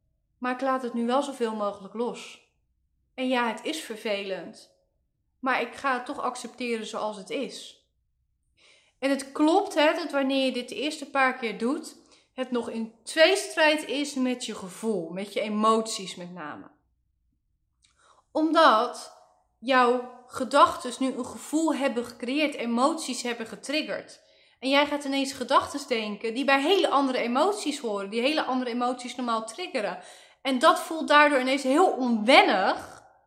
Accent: Dutch